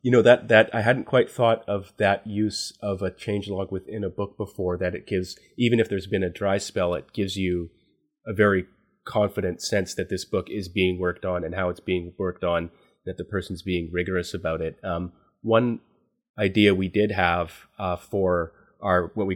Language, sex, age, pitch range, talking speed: English, male, 30-49, 85-100 Hz, 205 wpm